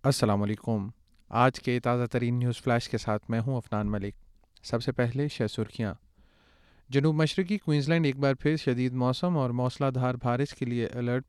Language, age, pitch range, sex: Urdu, 30-49, 120-145 Hz, male